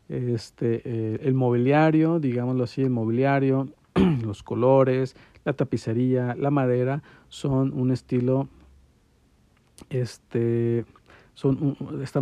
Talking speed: 95 wpm